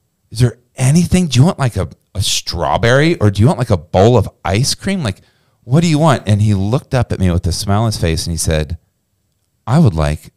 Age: 40-59